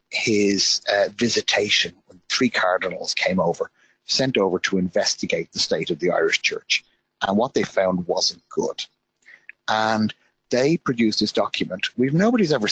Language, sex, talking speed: English, male, 150 wpm